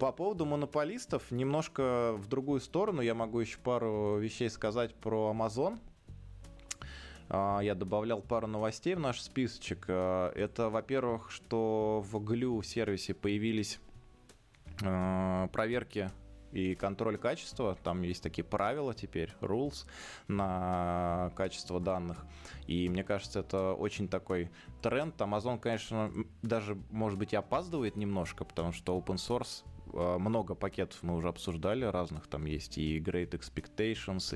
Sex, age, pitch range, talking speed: male, 20-39, 90-110 Hz, 125 wpm